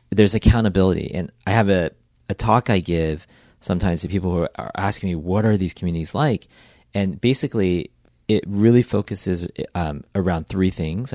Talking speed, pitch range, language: 165 wpm, 80-105 Hz, English